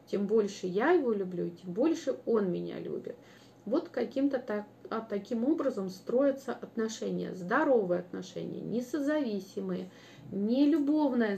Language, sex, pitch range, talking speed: Russian, female, 195-270 Hz, 110 wpm